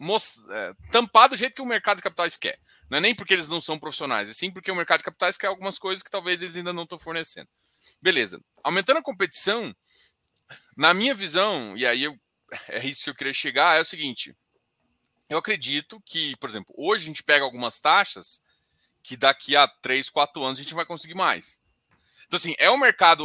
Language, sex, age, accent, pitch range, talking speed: Portuguese, male, 20-39, Brazilian, 150-210 Hz, 210 wpm